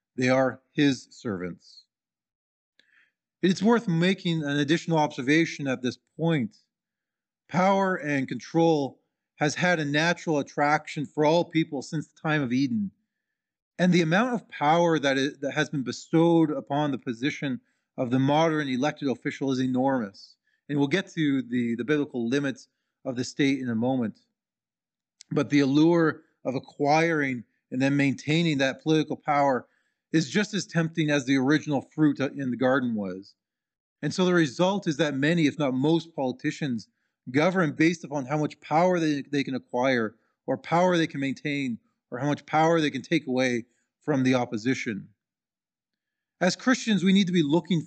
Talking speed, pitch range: 165 wpm, 135-165 Hz